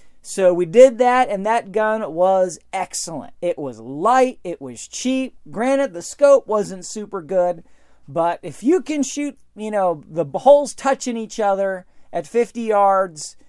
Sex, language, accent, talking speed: male, English, American, 160 wpm